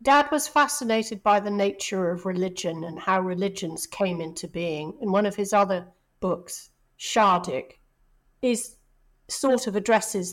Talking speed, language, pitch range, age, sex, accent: 150 wpm, English, 180-235 Hz, 50-69, female, British